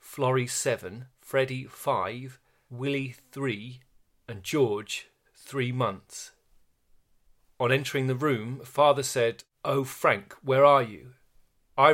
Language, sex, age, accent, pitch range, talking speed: English, male, 40-59, British, 110-130 Hz, 110 wpm